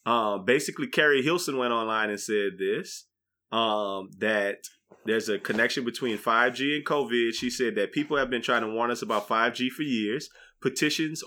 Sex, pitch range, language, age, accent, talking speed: male, 115-145 Hz, English, 20-39, American, 175 wpm